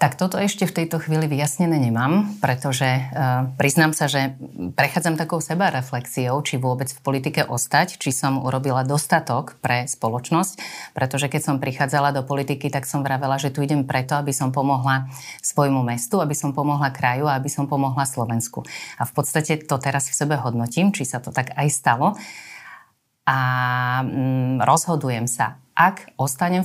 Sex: female